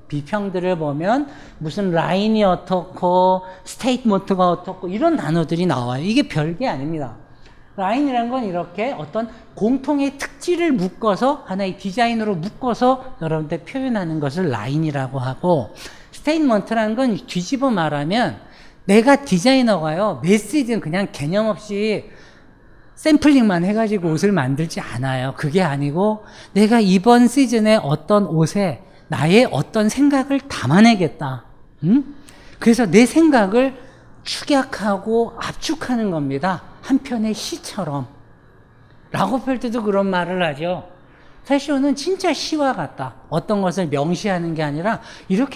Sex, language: male, Korean